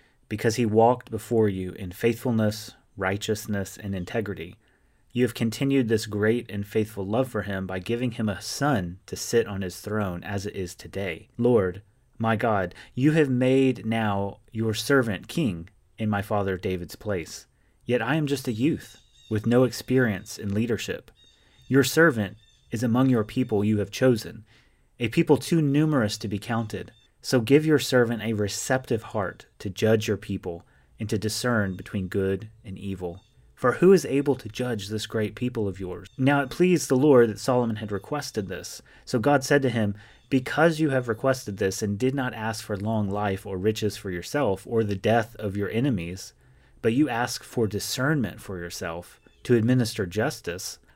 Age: 30-49